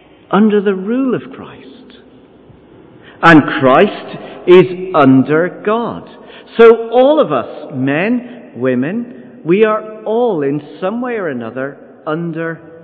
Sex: male